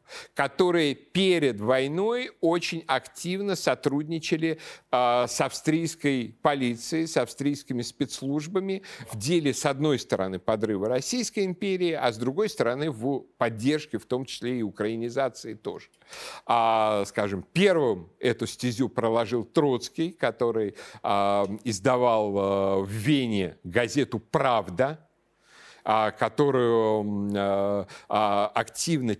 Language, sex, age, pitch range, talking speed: Russian, male, 50-69, 110-155 Hz, 100 wpm